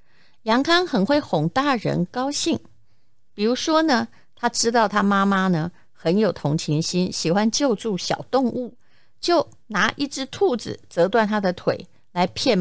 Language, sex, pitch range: Chinese, female, 170-225 Hz